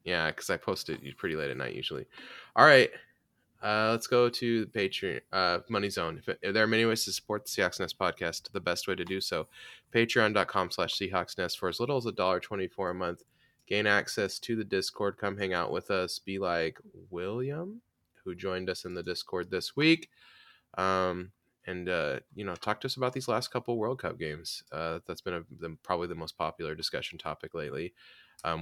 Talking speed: 215 wpm